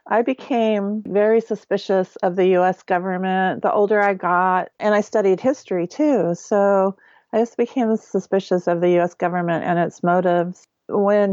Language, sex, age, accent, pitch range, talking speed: English, female, 40-59, American, 175-210 Hz, 160 wpm